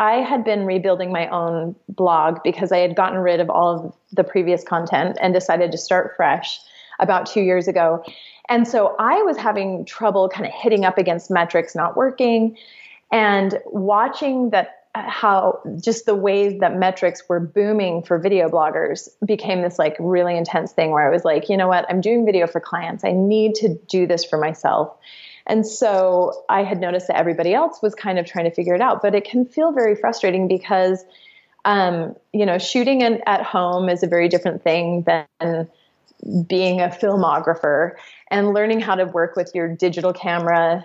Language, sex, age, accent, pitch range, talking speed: English, female, 30-49, American, 170-210 Hz, 190 wpm